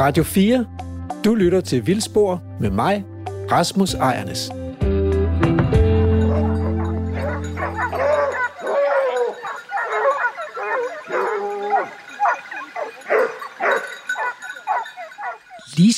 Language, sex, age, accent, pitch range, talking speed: Danish, male, 60-79, native, 135-210 Hz, 40 wpm